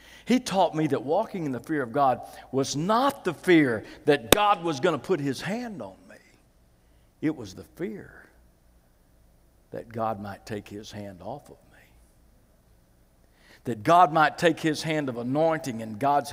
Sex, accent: male, American